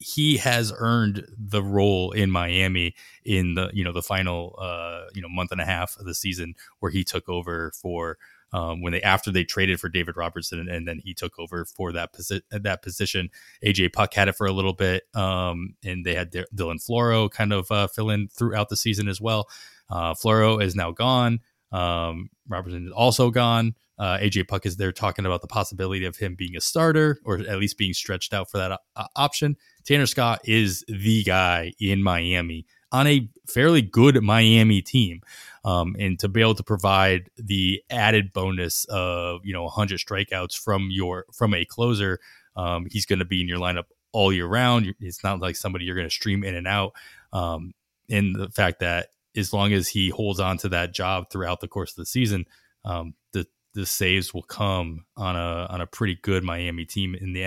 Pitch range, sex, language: 90-105 Hz, male, English